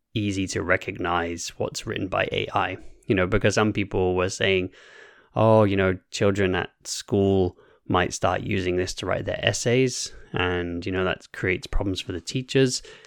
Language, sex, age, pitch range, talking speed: English, male, 20-39, 95-115 Hz, 170 wpm